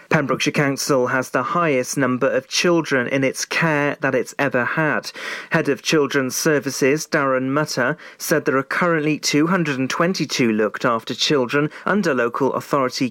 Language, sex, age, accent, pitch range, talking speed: English, male, 40-59, British, 130-165 Hz, 140 wpm